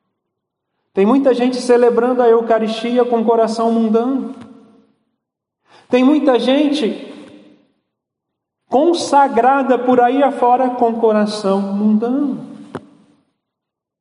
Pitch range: 175-225 Hz